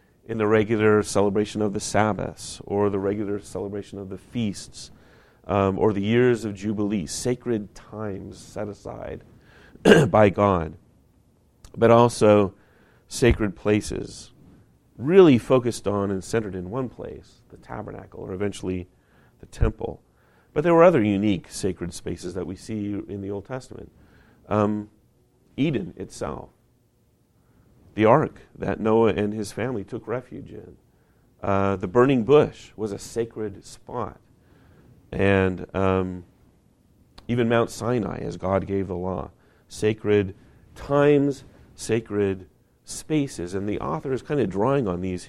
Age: 40-59